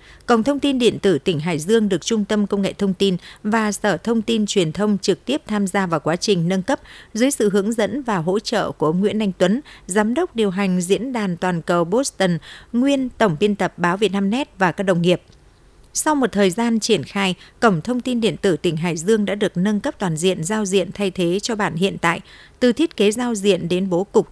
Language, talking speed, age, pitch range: Vietnamese, 245 wpm, 60-79, 185-225 Hz